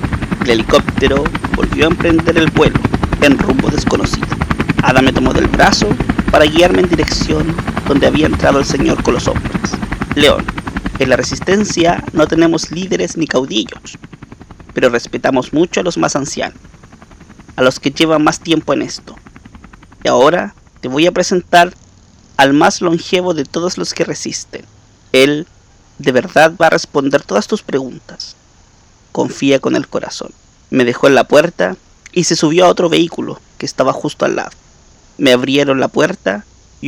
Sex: male